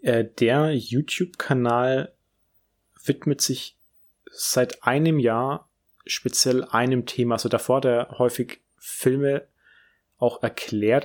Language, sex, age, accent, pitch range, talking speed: German, male, 30-49, German, 105-130 Hz, 90 wpm